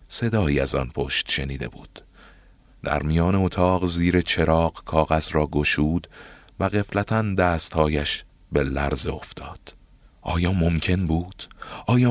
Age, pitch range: 30-49, 75-90 Hz